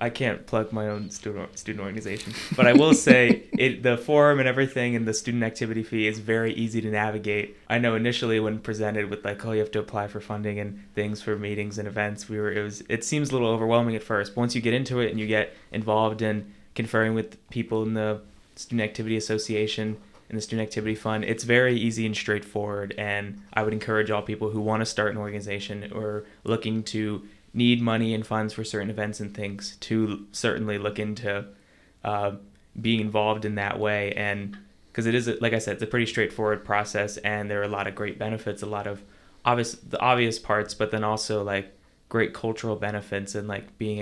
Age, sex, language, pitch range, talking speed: 20-39, male, English, 100-110 Hz, 215 wpm